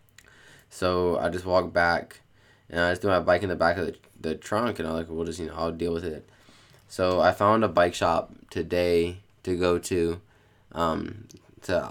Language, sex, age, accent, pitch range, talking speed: English, male, 20-39, American, 85-105 Hz, 210 wpm